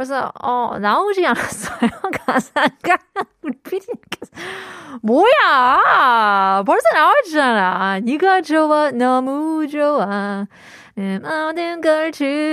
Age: 30-49